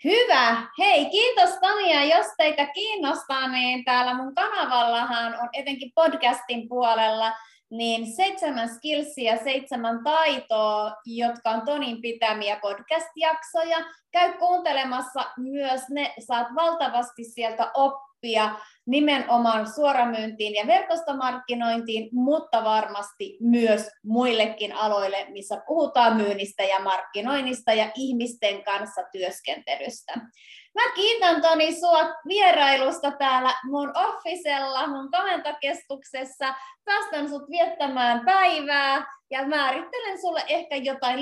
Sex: female